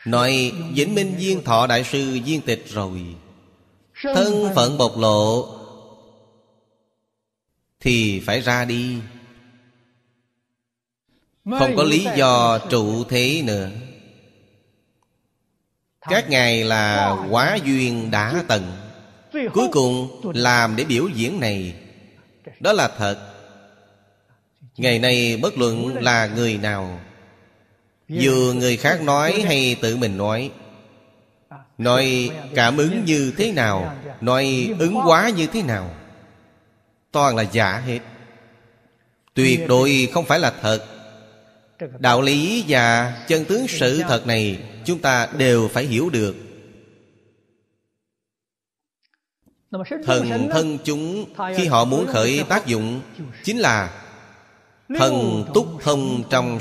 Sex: male